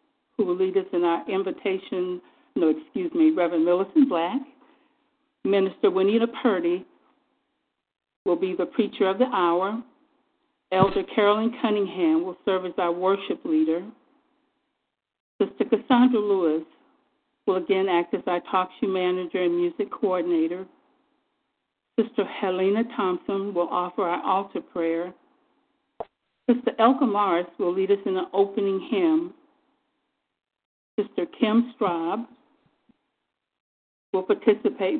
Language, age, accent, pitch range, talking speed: English, 50-69, American, 185-250 Hz, 120 wpm